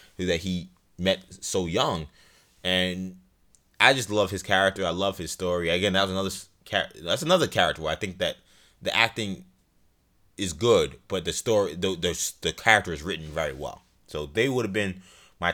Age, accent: 20-39, American